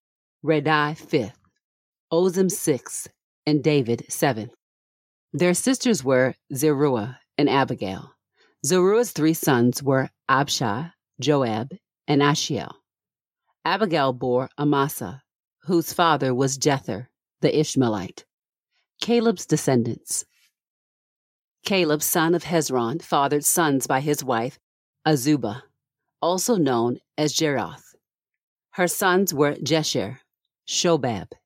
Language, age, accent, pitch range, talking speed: English, 40-59, American, 130-165 Hz, 95 wpm